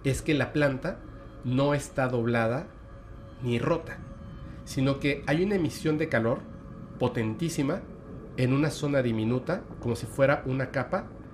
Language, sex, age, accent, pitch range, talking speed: Spanish, male, 40-59, Mexican, 115-145 Hz, 140 wpm